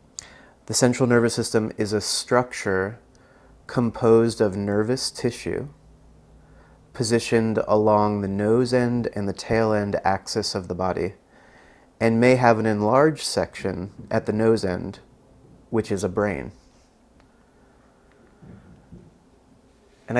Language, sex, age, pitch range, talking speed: English, male, 30-49, 100-115 Hz, 115 wpm